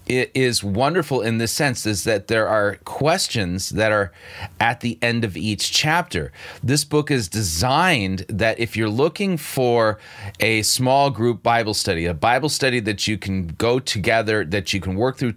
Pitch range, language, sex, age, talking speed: 95-125 Hz, English, male, 30-49, 180 wpm